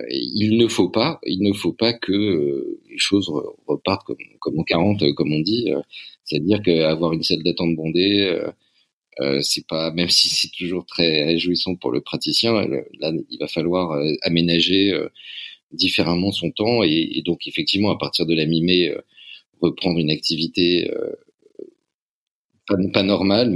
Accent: French